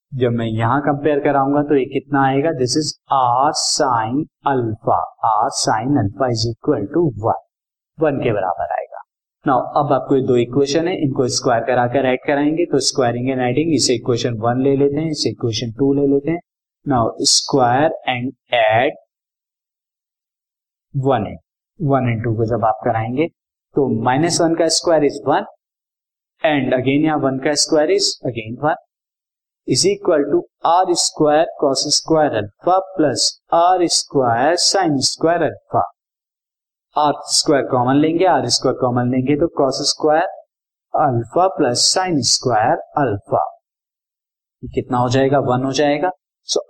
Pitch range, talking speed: 125-155 Hz, 150 wpm